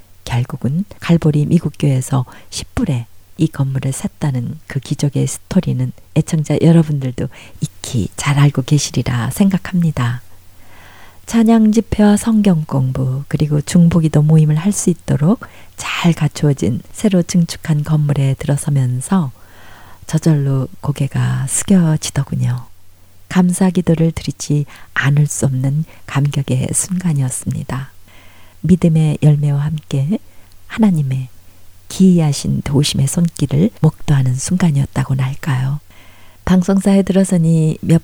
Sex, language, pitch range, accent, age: female, Korean, 130-160 Hz, native, 40-59